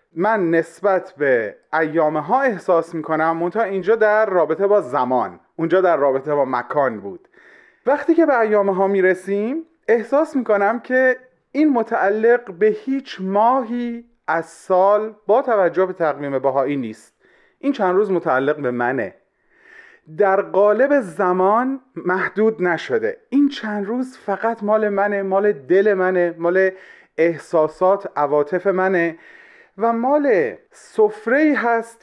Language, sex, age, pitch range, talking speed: Persian, male, 30-49, 170-235 Hz, 130 wpm